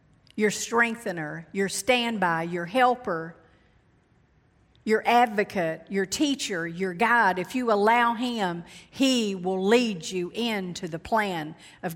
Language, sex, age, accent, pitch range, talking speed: English, female, 50-69, American, 185-230 Hz, 120 wpm